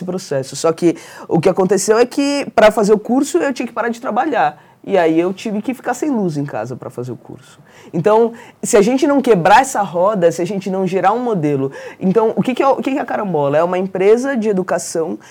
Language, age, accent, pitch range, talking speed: Portuguese, 20-39, Brazilian, 165-225 Hz, 235 wpm